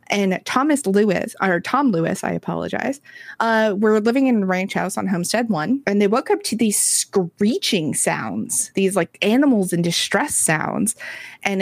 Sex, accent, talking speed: female, American, 170 wpm